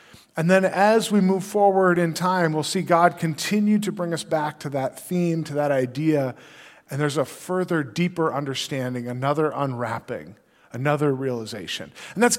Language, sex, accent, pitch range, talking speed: English, male, American, 150-210 Hz, 165 wpm